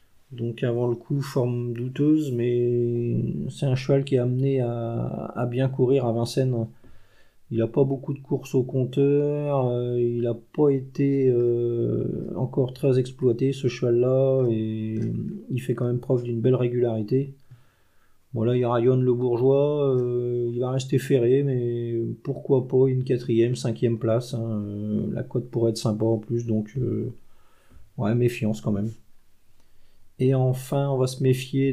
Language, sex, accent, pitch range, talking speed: French, male, French, 115-135 Hz, 160 wpm